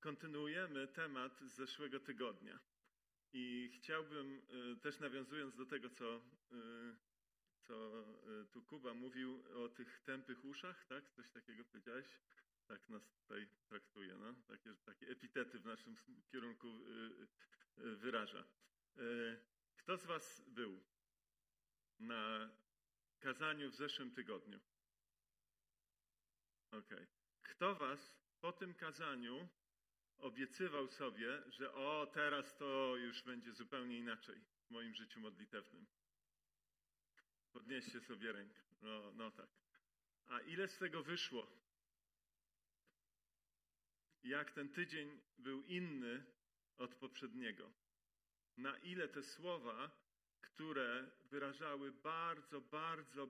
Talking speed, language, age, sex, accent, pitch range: 110 wpm, Polish, 40-59, male, native, 120-150 Hz